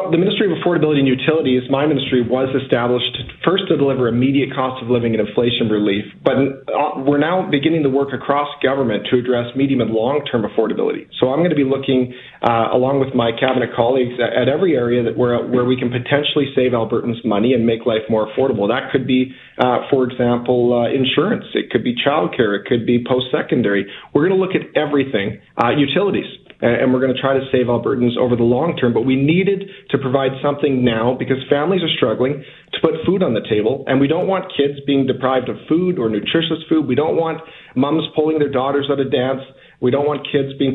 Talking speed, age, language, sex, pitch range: 210 wpm, 40-59, English, male, 120-145 Hz